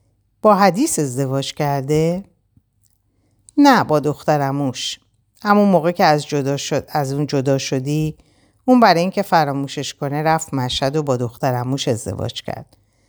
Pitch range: 110-155 Hz